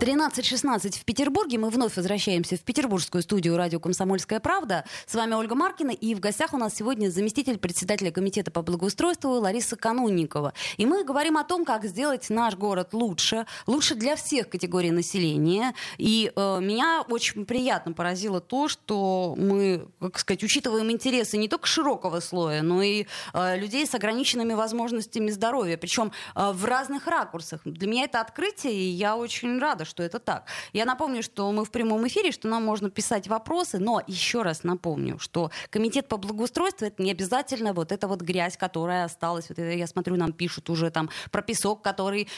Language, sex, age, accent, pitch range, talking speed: Russian, female, 20-39, native, 180-245 Hz, 175 wpm